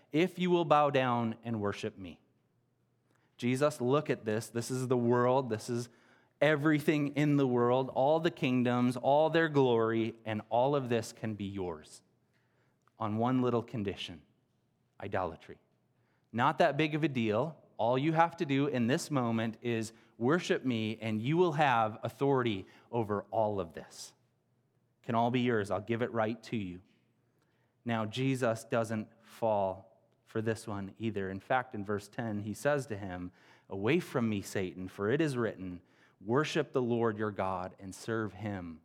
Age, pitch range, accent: 30-49, 105-130 Hz, American